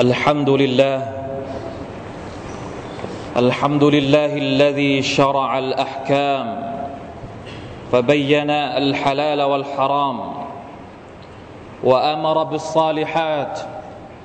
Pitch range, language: 135-155 Hz, Thai